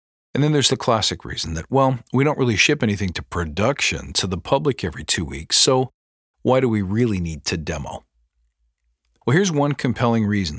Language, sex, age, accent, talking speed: English, male, 50-69, American, 195 wpm